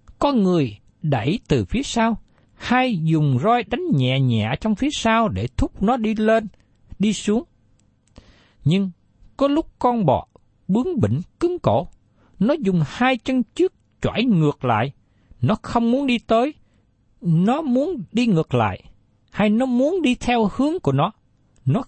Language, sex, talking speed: Vietnamese, male, 160 wpm